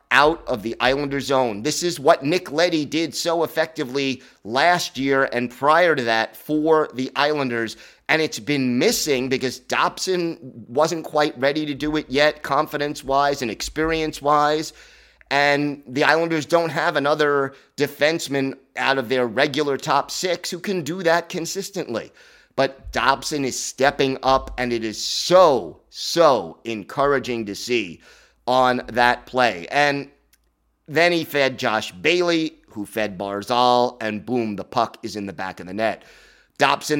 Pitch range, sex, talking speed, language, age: 125-155 Hz, male, 150 wpm, English, 30-49